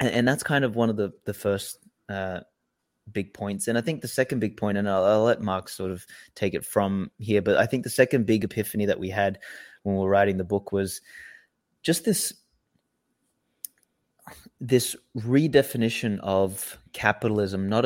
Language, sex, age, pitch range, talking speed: English, male, 20-39, 100-120 Hz, 180 wpm